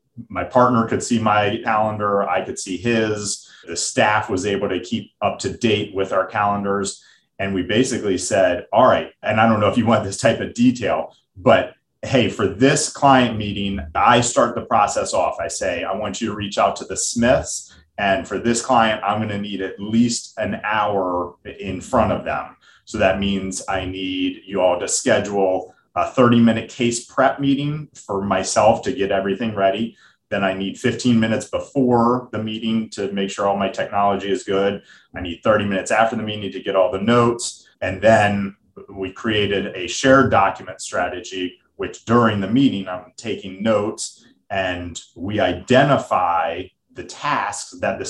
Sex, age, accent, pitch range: male, 30-49, American, 95-120 Hz